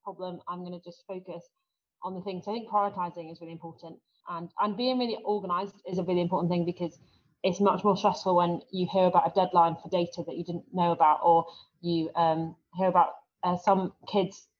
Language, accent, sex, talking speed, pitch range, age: English, British, female, 210 wpm, 175-205 Hz, 30-49